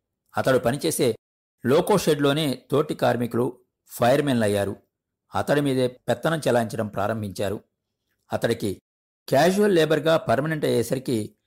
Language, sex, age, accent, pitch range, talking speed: Telugu, male, 50-69, native, 105-130 Hz, 85 wpm